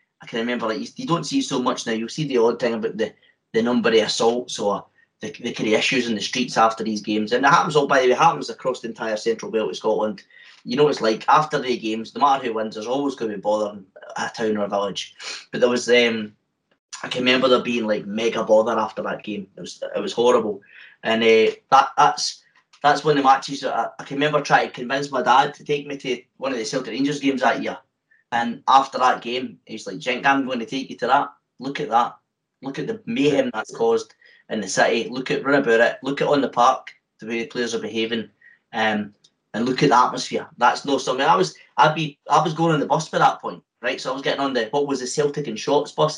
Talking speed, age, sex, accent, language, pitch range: 260 wpm, 20-39, male, British, English, 115-150 Hz